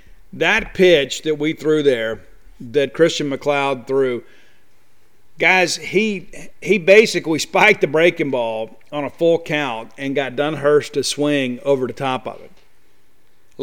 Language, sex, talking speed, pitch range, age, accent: English, male, 145 wpm, 140-170 Hz, 50-69, American